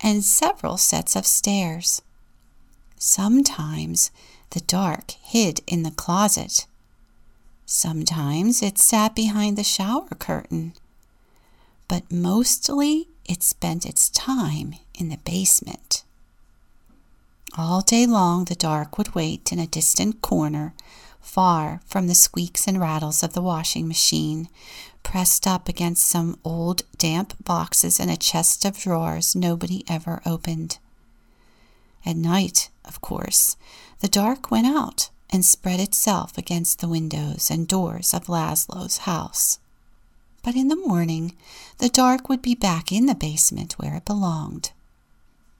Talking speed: 130 wpm